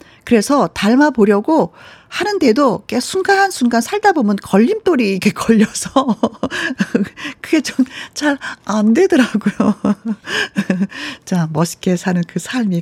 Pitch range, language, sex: 175-260 Hz, Korean, female